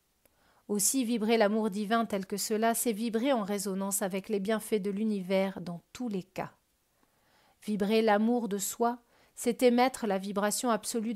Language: French